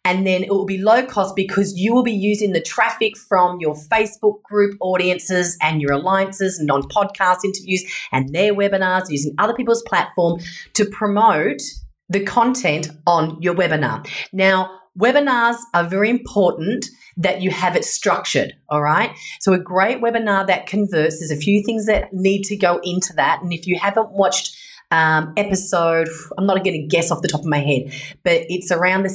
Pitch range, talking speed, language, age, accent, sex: 160-205 Hz, 185 wpm, English, 30-49, Australian, female